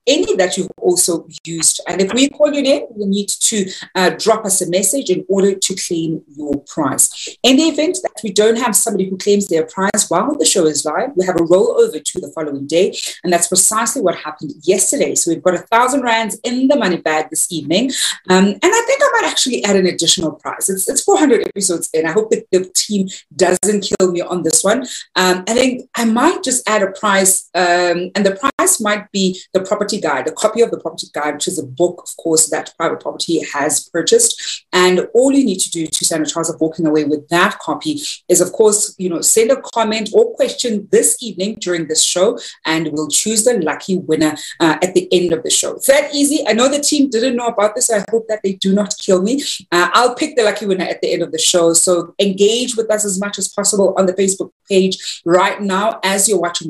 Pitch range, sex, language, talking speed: 170-225 Hz, female, English, 235 wpm